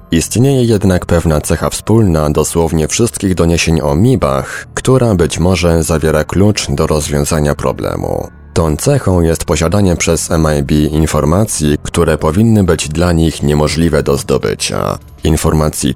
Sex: male